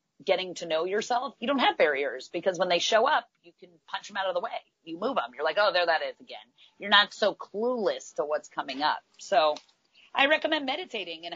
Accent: American